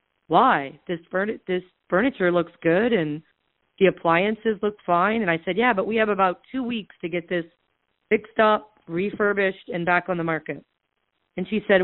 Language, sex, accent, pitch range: English, female, American, 185-220 Hz